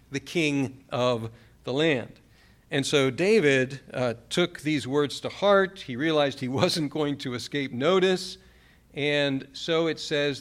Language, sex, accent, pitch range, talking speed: English, male, American, 135-180 Hz, 150 wpm